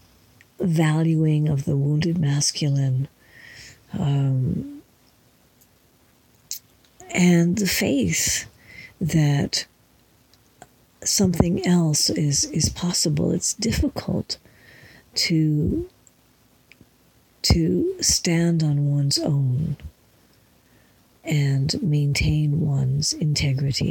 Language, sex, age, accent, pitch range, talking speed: English, female, 50-69, American, 135-165 Hz, 70 wpm